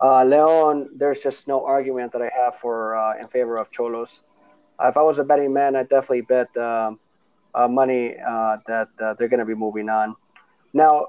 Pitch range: 125-170 Hz